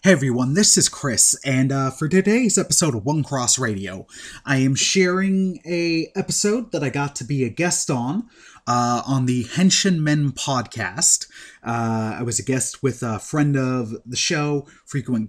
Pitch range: 120-160 Hz